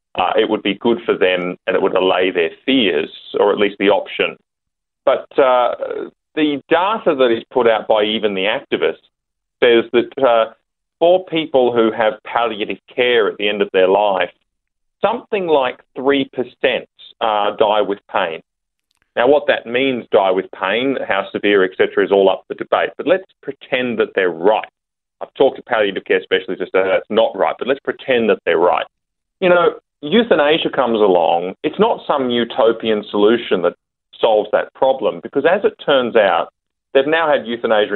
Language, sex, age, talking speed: English, male, 30-49, 175 wpm